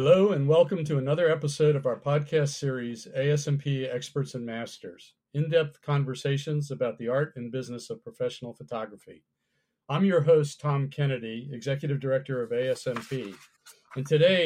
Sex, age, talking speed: male, 50-69, 145 wpm